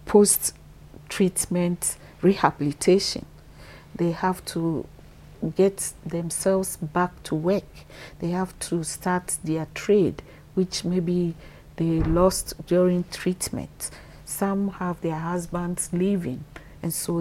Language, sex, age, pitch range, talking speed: English, female, 40-59, 160-185 Hz, 100 wpm